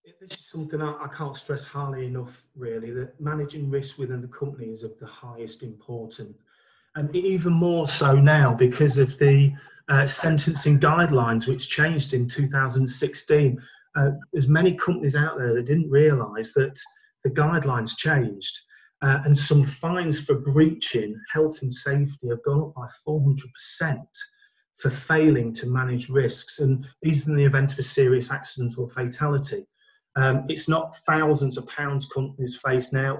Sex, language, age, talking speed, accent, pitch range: male, English, 40-59, 155 wpm, British, 125-150 Hz